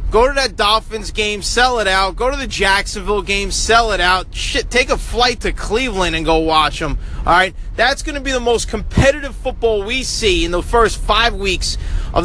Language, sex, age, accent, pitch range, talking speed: English, male, 30-49, American, 215-290 Hz, 215 wpm